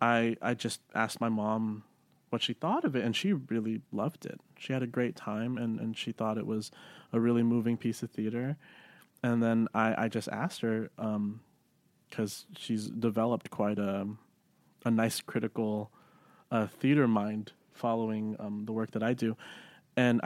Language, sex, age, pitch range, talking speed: English, male, 20-39, 110-125 Hz, 180 wpm